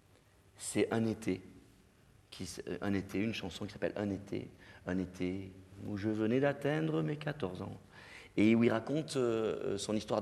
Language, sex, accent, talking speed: French, male, French, 145 wpm